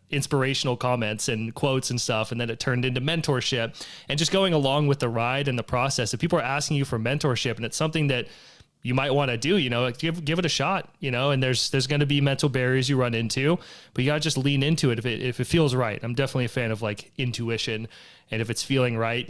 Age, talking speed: 20-39, 260 wpm